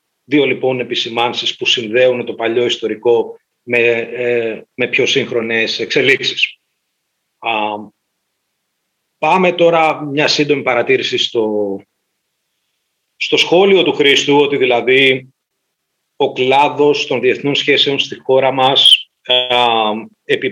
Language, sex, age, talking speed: Greek, male, 40-59, 100 wpm